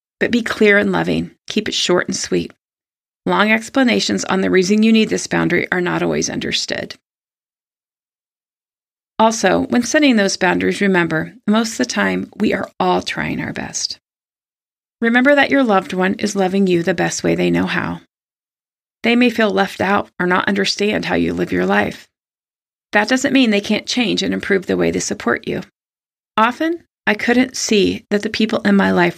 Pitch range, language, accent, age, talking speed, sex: 180-235 Hz, English, American, 30-49, 185 wpm, female